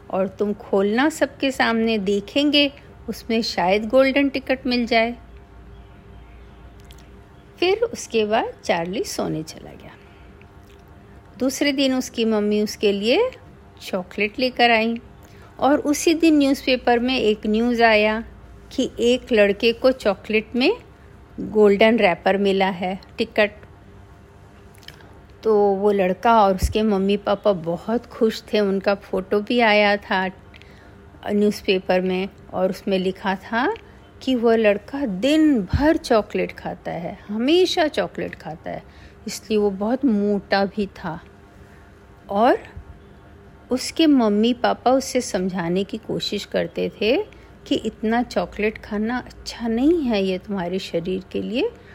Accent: native